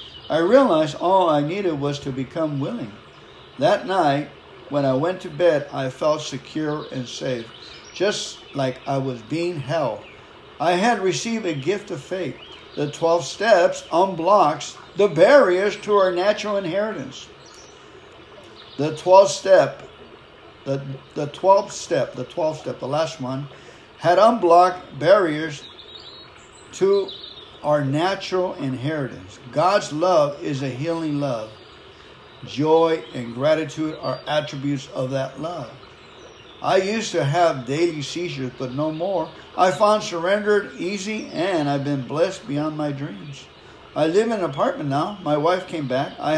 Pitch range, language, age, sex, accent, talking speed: 140-185 Hz, English, 60-79, male, American, 140 wpm